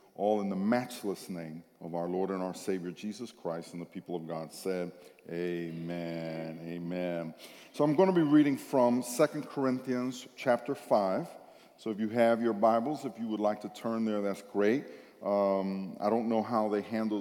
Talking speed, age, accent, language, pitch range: 190 wpm, 50-69, American, English, 100-125 Hz